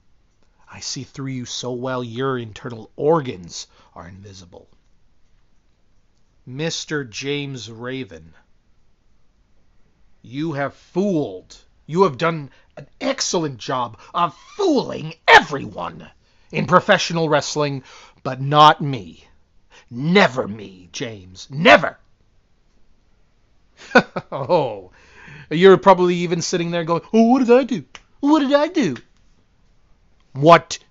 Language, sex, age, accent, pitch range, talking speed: English, male, 40-59, American, 110-175 Hz, 105 wpm